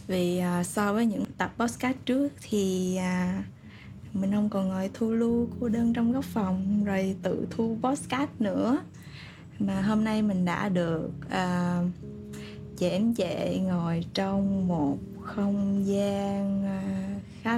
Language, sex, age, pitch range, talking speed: Vietnamese, female, 20-39, 180-215 Hz, 145 wpm